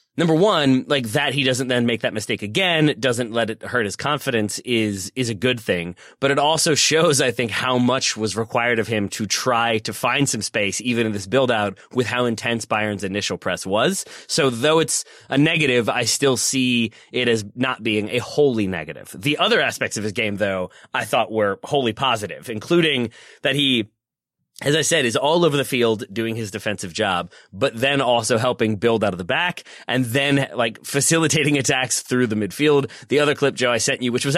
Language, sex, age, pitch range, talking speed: English, male, 30-49, 110-140 Hz, 210 wpm